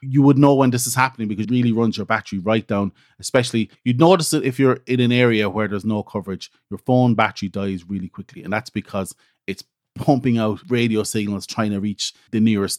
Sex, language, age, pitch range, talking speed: male, English, 30-49, 100-120 Hz, 220 wpm